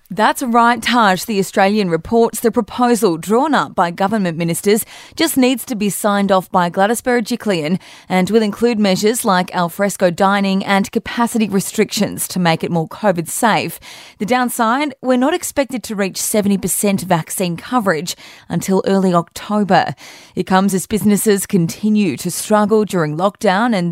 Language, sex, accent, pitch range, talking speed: English, female, Australian, 175-220 Hz, 155 wpm